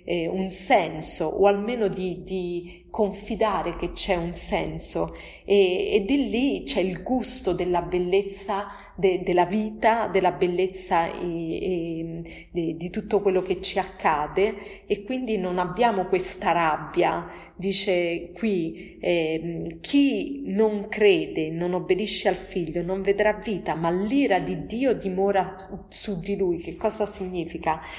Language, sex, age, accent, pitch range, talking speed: Italian, female, 30-49, native, 175-210 Hz, 130 wpm